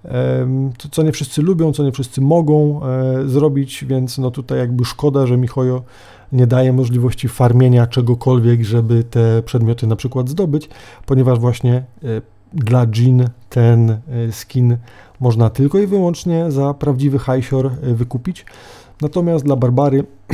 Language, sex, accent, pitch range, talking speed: Polish, male, native, 115-140 Hz, 125 wpm